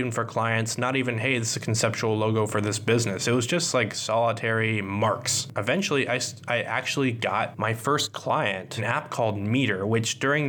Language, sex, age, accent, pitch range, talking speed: English, male, 20-39, American, 110-130 Hz, 190 wpm